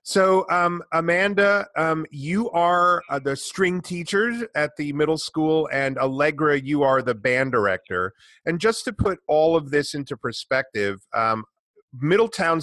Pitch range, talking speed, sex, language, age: 125-160 Hz, 150 wpm, male, English, 30-49